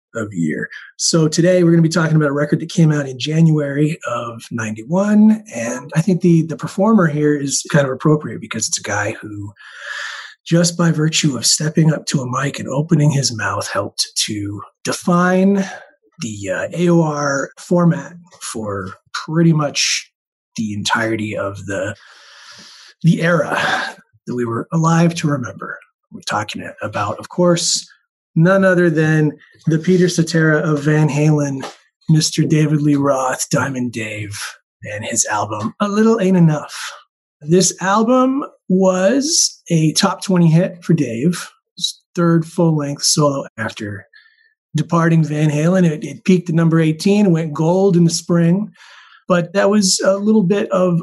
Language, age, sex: English, 30-49, male